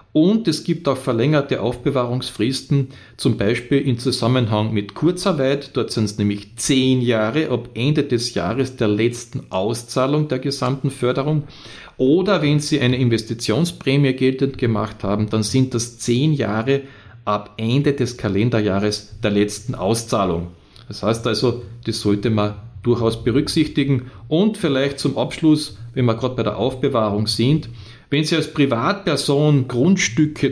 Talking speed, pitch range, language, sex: 140 wpm, 110-140 Hz, German, male